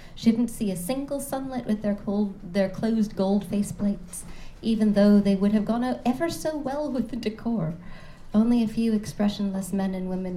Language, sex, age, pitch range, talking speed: English, female, 30-49, 175-200 Hz, 190 wpm